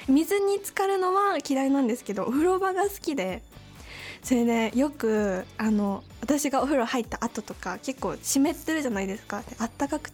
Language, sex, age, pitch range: Japanese, female, 10-29, 205-270 Hz